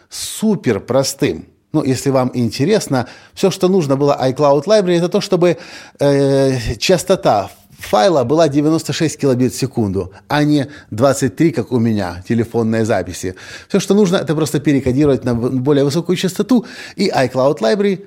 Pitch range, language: 120-170 Hz, Russian